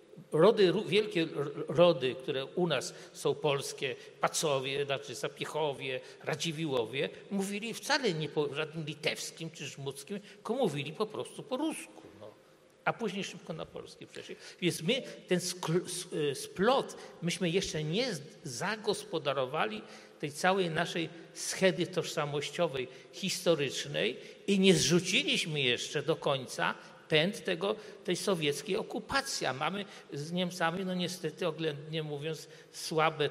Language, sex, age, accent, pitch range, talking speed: Polish, male, 50-69, native, 150-205 Hz, 125 wpm